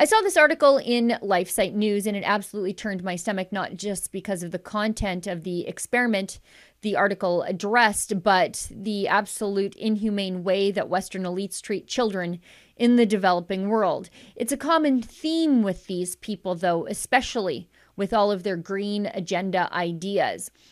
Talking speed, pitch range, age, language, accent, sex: 160 wpm, 185-245 Hz, 30-49, English, American, female